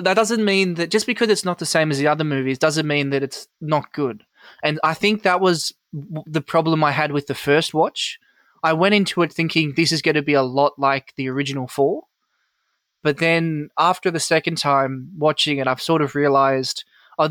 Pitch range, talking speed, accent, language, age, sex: 140-165 Hz, 215 wpm, Australian, English, 20-39, male